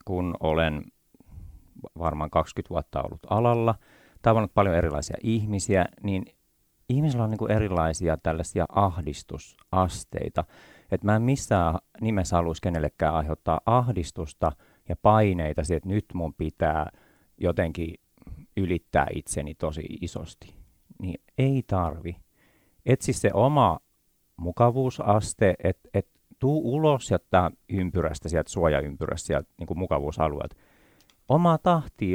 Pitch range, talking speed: 80-115 Hz, 110 wpm